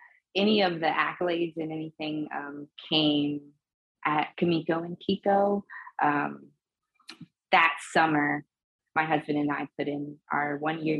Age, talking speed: 20-39, 125 wpm